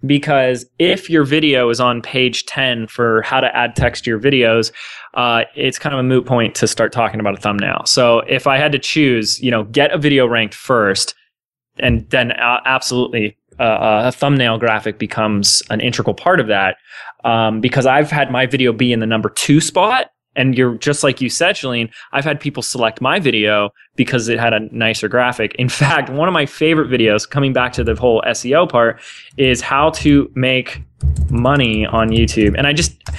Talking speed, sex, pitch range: 200 wpm, male, 115-145 Hz